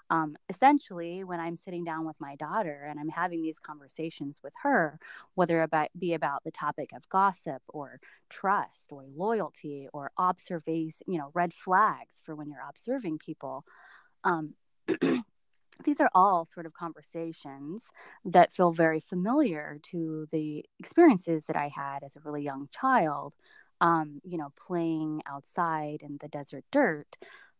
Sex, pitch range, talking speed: female, 155-195 Hz, 150 wpm